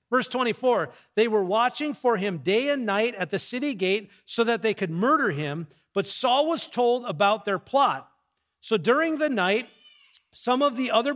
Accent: American